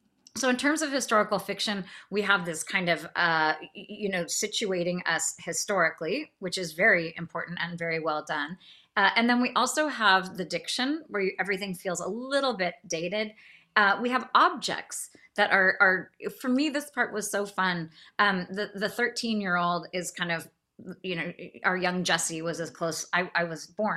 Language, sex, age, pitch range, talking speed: English, female, 30-49, 170-225 Hz, 190 wpm